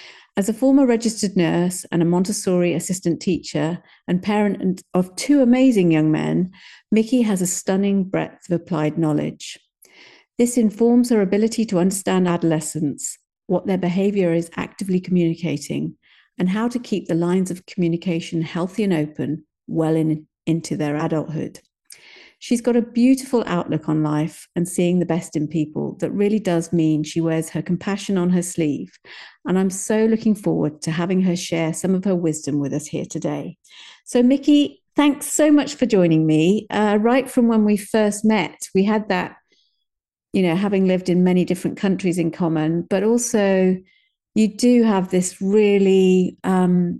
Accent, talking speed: British, 165 wpm